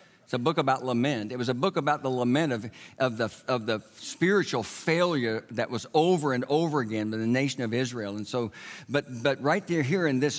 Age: 60-79